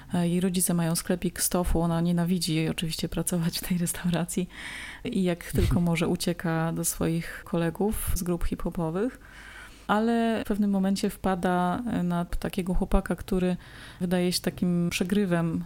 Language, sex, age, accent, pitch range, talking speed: Polish, female, 20-39, native, 175-195 Hz, 140 wpm